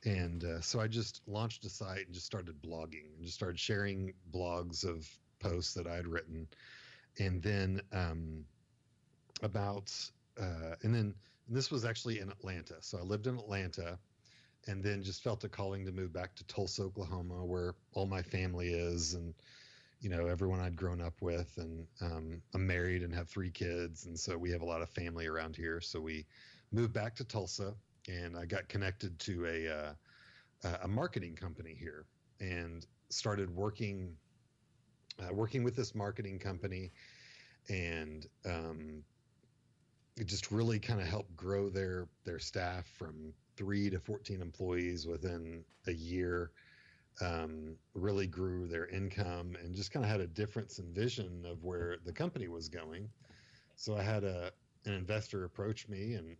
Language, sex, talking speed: English, male, 170 wpm